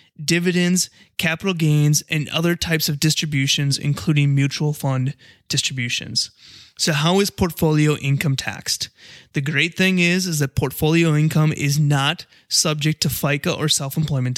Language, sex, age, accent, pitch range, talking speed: English, male, 20-39, American, 145-170 Hz, 140 wpm